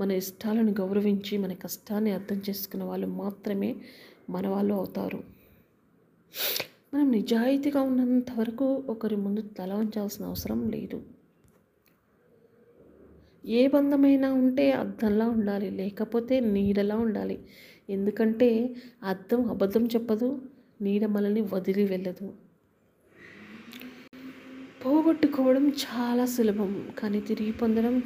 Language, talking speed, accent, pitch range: Telugu, 90 wpm, native, 200-250 Hz